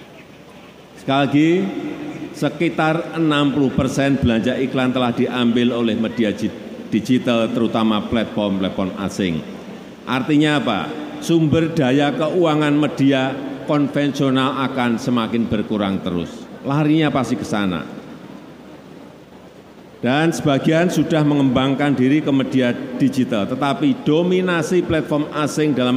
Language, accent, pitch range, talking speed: Indonesian, native, 125-160 Hz, 100 wpm